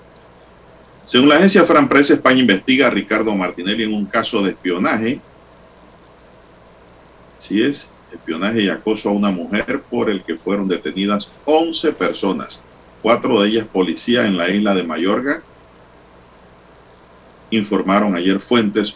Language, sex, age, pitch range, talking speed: Spanish, male, 50-69, 70-115 Hz, 130 wpm